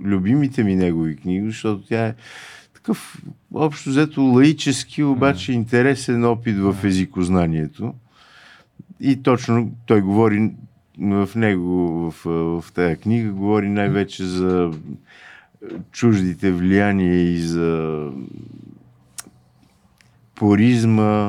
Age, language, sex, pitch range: 50-69, Bulgarian, male, 90-125 Hz